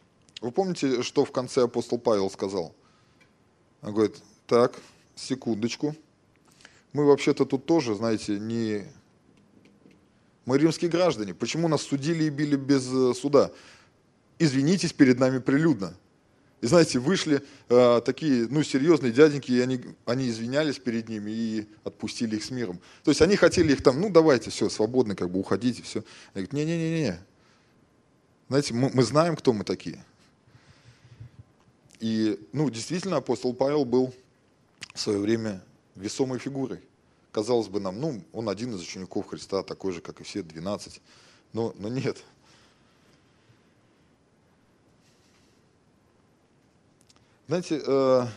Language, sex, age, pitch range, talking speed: Russian, male, 20-39, 115-150 Hz, 130 wpm